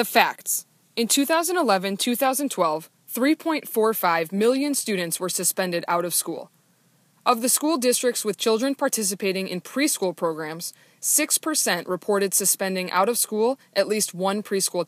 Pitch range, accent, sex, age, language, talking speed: 180-240 Hz, American, female, 20-39, English, 130 wpm